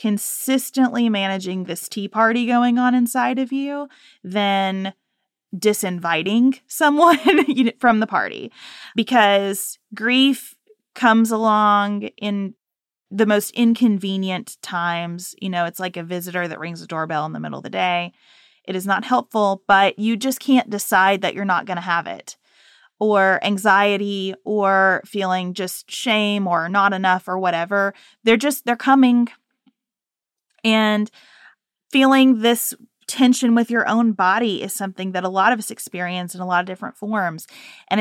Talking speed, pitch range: 150 wpm, 185-235 Hz